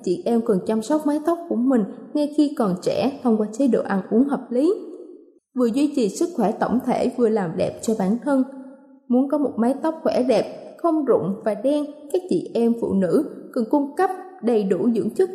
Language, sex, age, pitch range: Thai, female, 20-39, 230-310 Hz